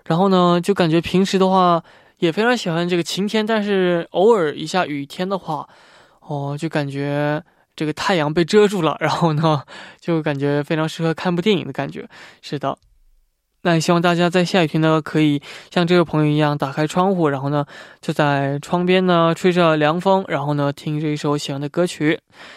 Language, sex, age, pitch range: Korean, male, 20-39, 155-200 Hz